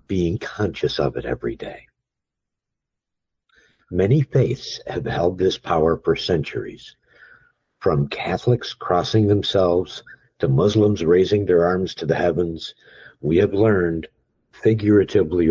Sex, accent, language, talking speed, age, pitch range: male, American, English, 115 wpm, 60-79, 80-105 Hz